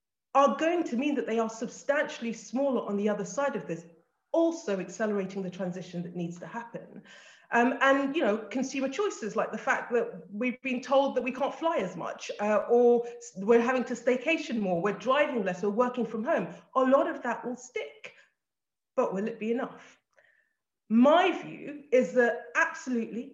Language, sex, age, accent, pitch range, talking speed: English, female, 40-59, British, 210-275 Hz, 185 wpm